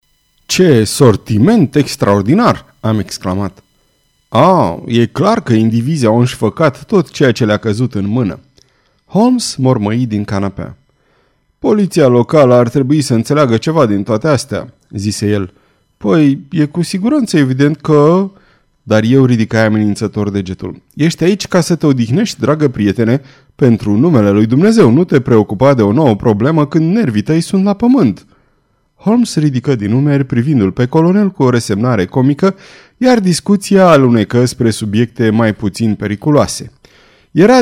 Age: 30-49